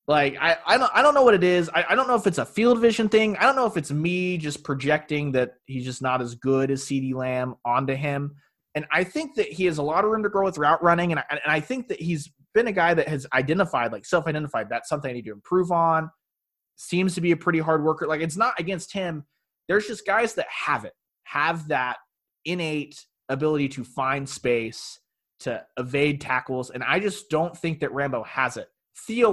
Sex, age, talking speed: male, 20-39, 230 wpm